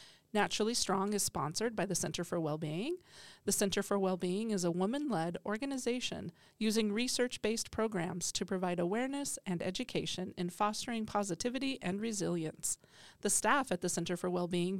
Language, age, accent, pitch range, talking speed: English, 40-59, American, 180-225 Hz, 150 wpm